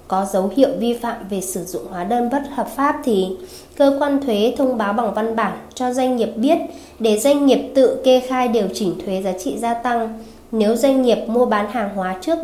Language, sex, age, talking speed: Vietnamese, female, 20-39, 225 wpm